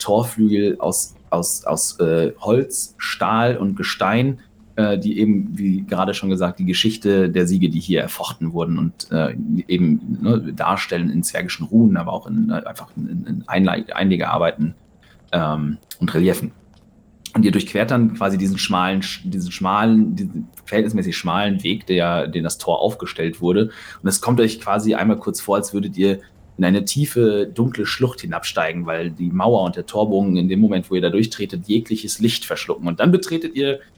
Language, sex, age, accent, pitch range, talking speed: German, male, 30-49, German, 90-120 Hz, 175 wpm